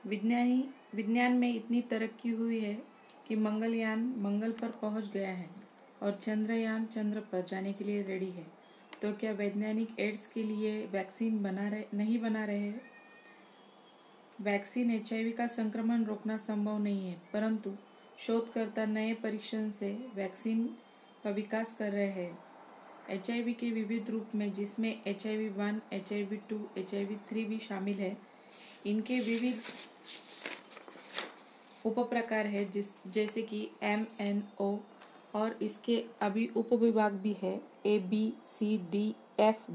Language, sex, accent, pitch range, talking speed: Hindi, female, native, 205-230 Hz, 120 wpm